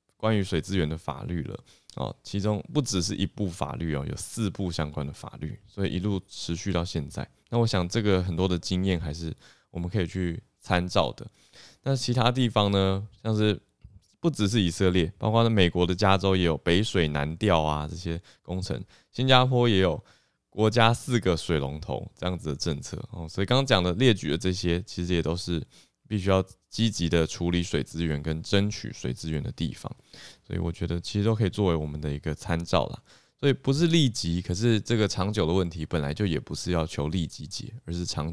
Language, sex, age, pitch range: Chinese, male, 20-39, 80-105 Hz